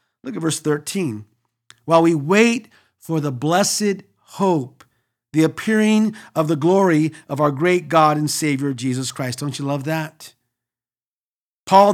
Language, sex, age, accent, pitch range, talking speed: English, male, 50-69, American, 140-195 Hz, 145 wpm